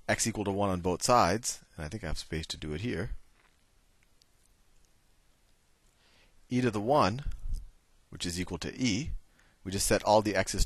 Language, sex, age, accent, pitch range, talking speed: English, male, 40-59, American, 80-110 Hz, 180 wpm